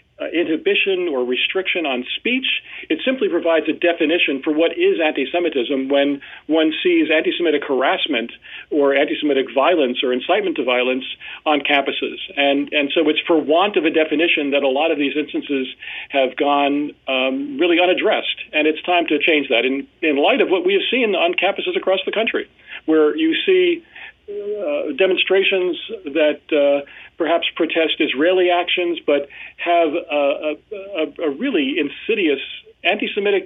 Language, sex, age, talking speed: English, male, 40-59, 155 wpm